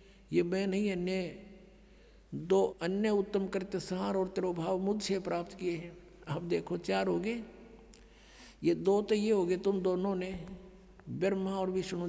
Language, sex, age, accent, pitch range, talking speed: Hindi, male, 60-79, native, 175-205 Hz, 155 wpm